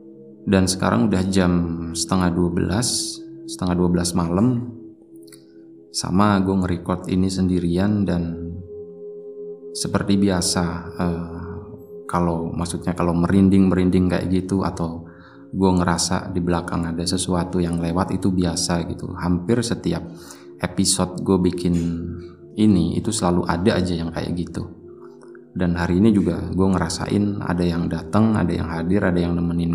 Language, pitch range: Indonesian, 85-100 Hz